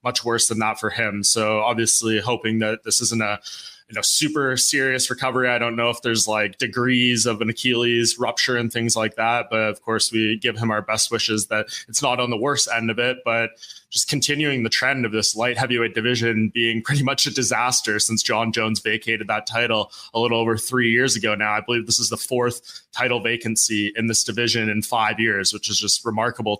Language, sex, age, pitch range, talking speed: English, male, 20-39, 110-125 Hz, 220 wpm